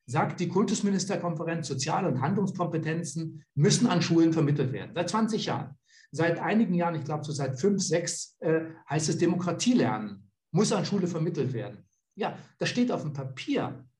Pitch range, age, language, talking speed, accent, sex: 140-185 Hz, 60-79, German, 165 wpm, German, male